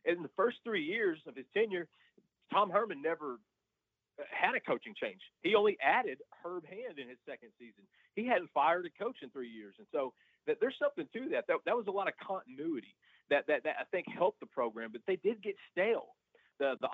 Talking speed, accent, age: 210 wpm, American, 40-59